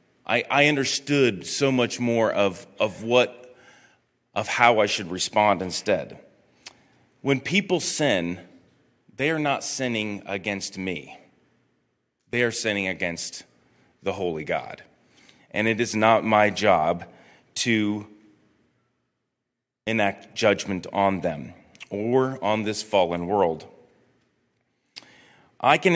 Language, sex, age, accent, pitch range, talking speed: English, male, 30-49, American, 95-125 Hz, 110 wpm